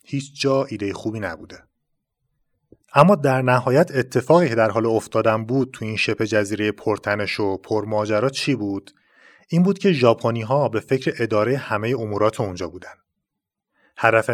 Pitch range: 105-135 Hz